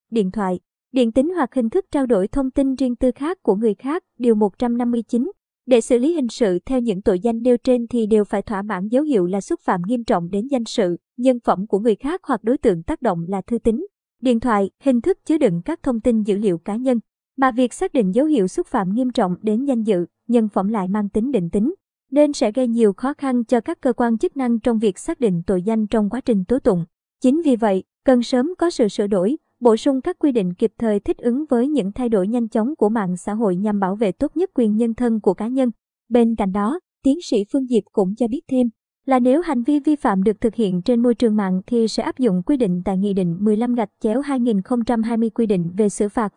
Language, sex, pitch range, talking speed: Vietnamese, male, 215-260 Hz, 250 wpm